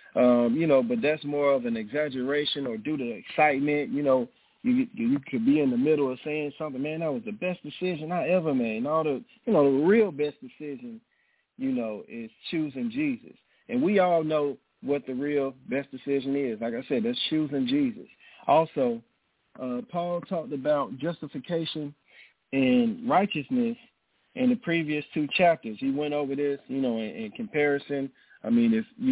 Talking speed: 185 wpm